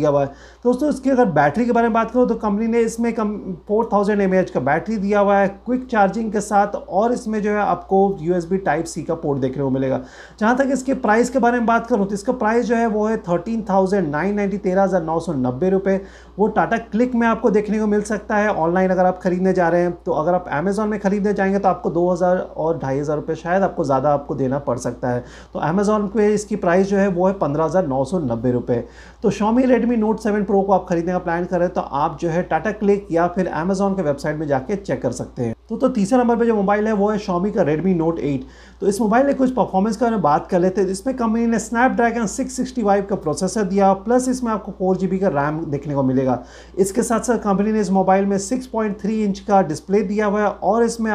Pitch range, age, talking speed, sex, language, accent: 175-215 Hz, 30-49, 180 wpm, male, Hindi, native